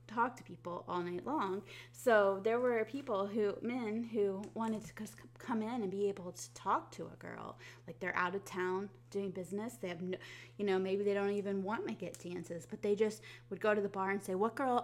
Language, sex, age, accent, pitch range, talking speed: English, female, 20-39, American, 180-220 Hz, 230 wpm